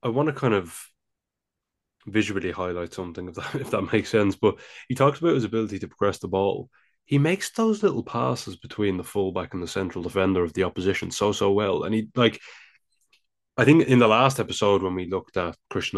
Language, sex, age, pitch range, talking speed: English, male, 20-39, 95-110 Hz, 210 wpm